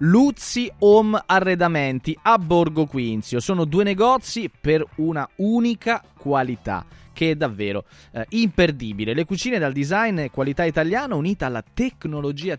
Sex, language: male, Italian